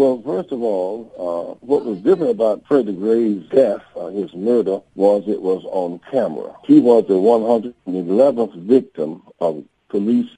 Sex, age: male, 50-69